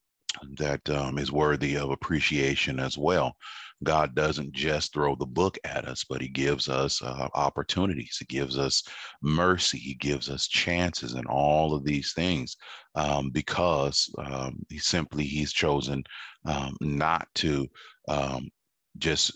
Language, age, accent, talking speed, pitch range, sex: English, 40-59, American, 145 wpm, 70-80 Hz, male